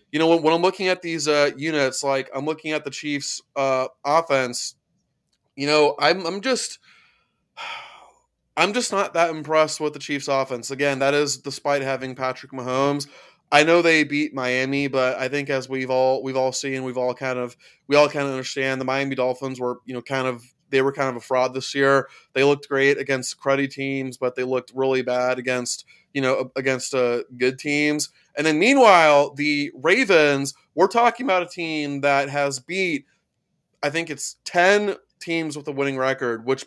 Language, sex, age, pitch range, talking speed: English, male, 20-39, 130-155 Hz, 195 wpm